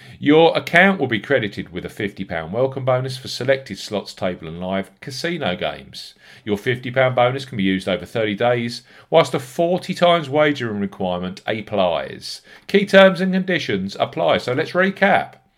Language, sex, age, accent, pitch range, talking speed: English, male, 40-59, British, 100-160 Hz, 165 wpm